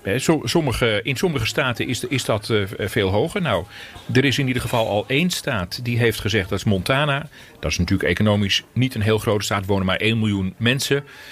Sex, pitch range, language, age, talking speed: male, 100-120 Hz, Dutch, 40-59, 215 wpm